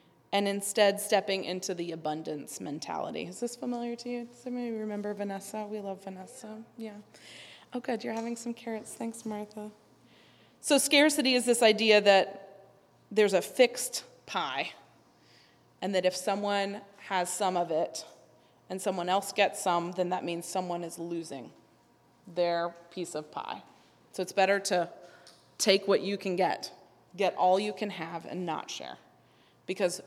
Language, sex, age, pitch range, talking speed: English, female, 20-39, 180-220 Hz, 155 wpm